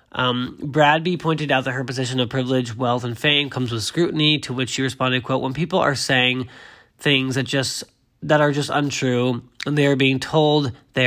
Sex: male